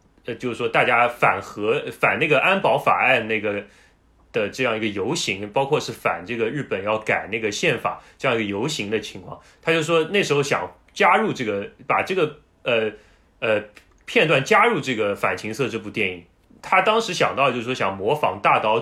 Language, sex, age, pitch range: Chinese, male, 20-39, 110-170 Hz